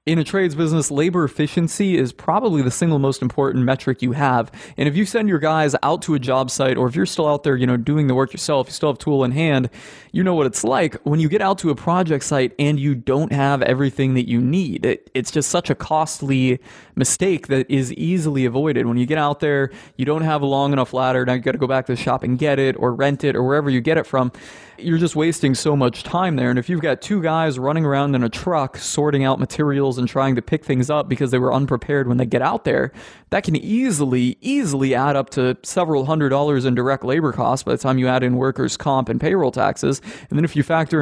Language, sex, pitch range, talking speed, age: English, male, 130-155 Hz, 255 wpm, 20-39